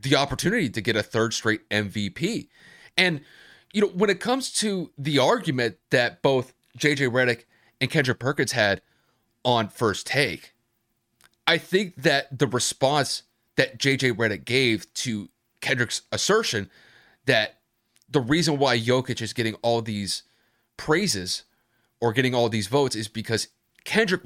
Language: English